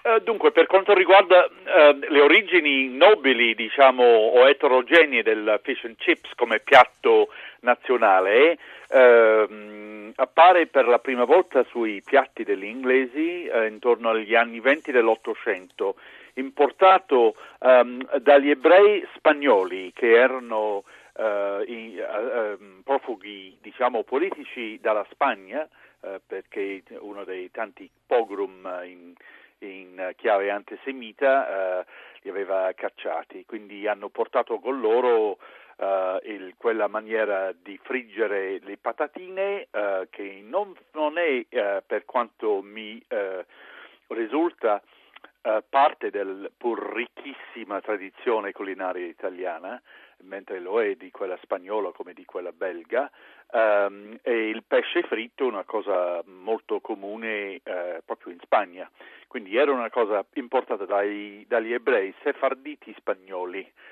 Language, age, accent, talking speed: Italian, 50-69, native, 115 wpm